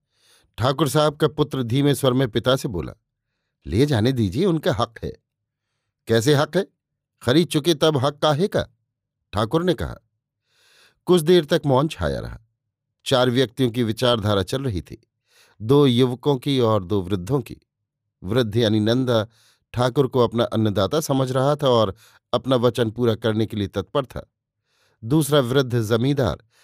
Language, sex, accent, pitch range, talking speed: Hindi, male, native, 110-140 Hz, 160 wpm